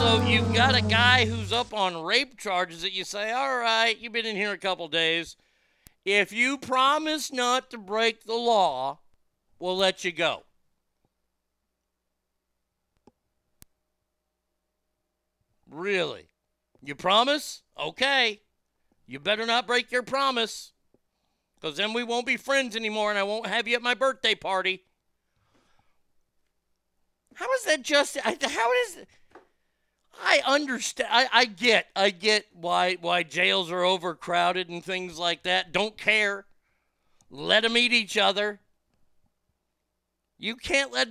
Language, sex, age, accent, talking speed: English, male, 50-69, American, 135 wpm